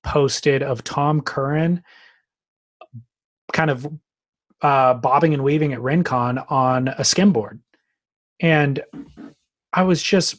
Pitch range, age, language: 145-180 Hz, 30-49, English